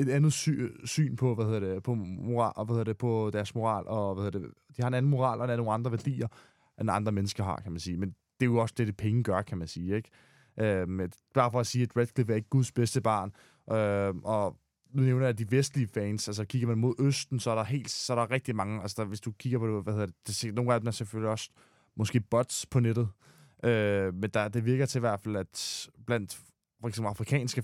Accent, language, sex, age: native, Danish, male, 20-39